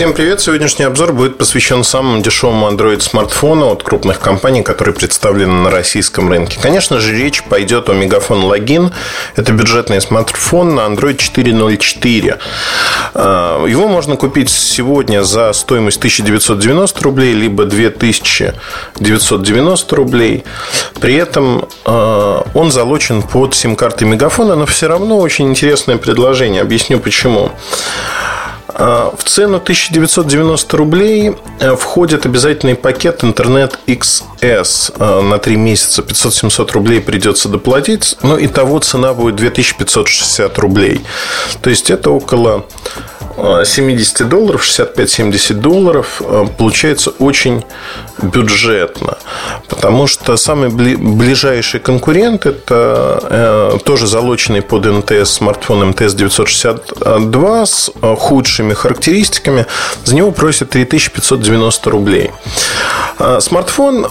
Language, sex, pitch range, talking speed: Russian, male, 110-150 Hz, 105 wpm